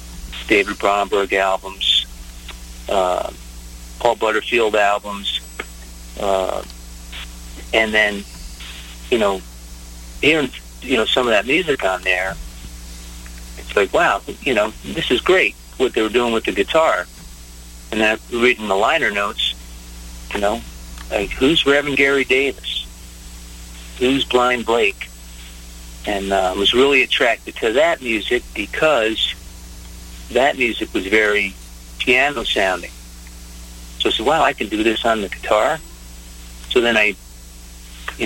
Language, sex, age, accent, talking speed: English, male, 50-69, American, 130 wpm